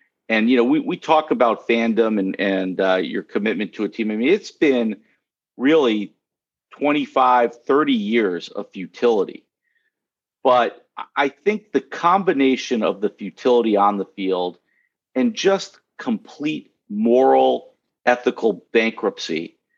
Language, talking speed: English, 130 wpm